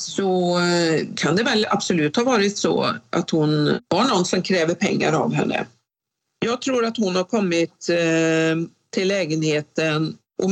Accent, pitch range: native, 165-205 Hz